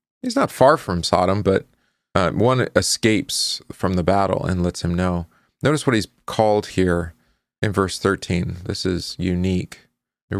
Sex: male